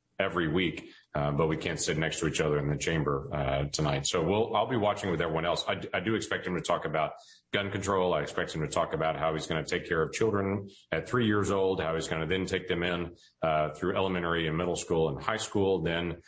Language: English